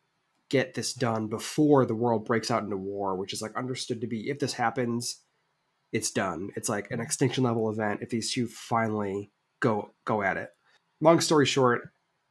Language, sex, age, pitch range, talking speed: English, male, 20-39, 110-130 Hz, 180 wpm